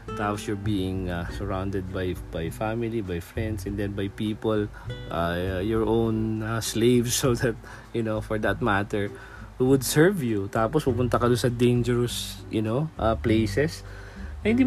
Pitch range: 110-135 Hz